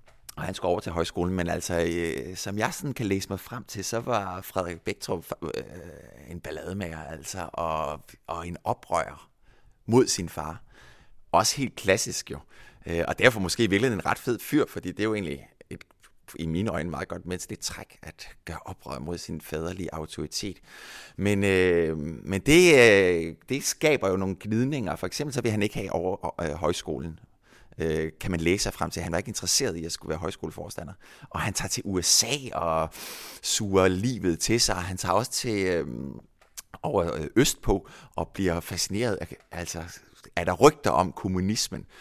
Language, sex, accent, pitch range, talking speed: Danish, male, native, 85-105 Hz, 180 wpm